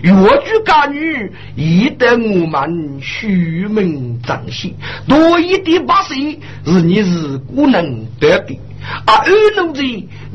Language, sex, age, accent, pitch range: Chinese, male, 50-69, native, 195-320 Hz